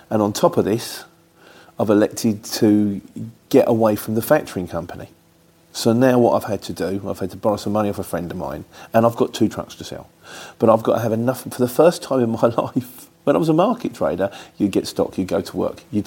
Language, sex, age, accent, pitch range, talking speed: English, male, 40-59, British, 95-120 Hz, 245 wpm